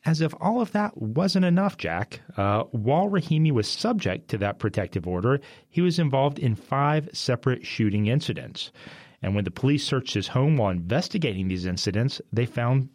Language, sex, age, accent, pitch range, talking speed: English, male, 40-59, American, 100-150 Hz, 175 wpm